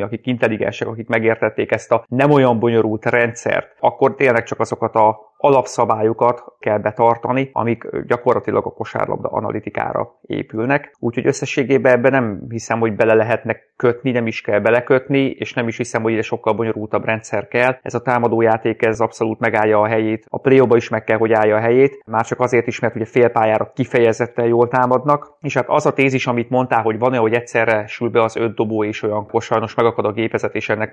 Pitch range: 110-125 Hz